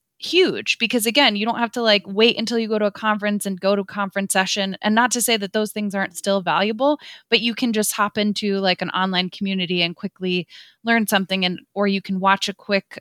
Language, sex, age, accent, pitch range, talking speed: English, female, 20-39, American, 185-215 Hz, 240 wpm